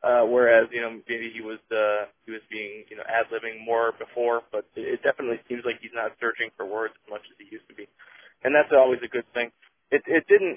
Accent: American